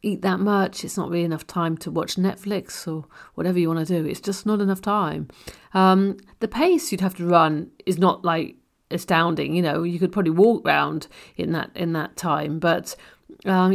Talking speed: 205 wpm